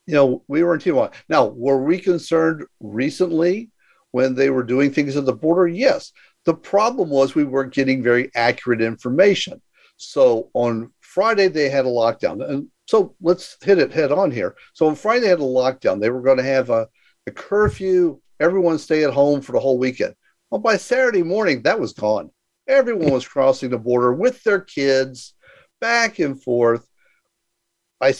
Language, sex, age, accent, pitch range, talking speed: English, male, 50-69, American, 130-200 Hz, 180 wpm